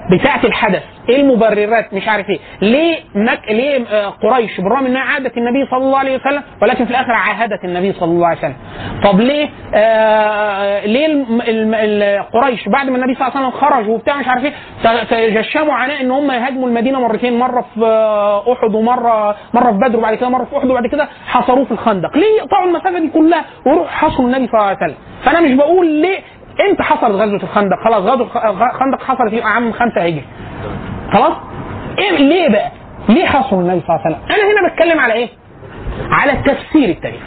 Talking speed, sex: 185 wpm, male